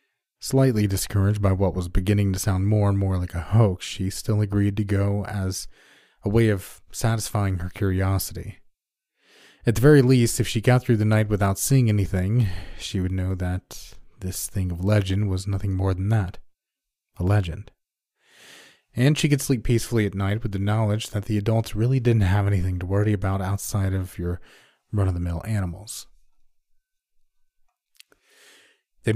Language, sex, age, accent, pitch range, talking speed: English, male, 30-49, American, 95-115 Hz, 165 wpm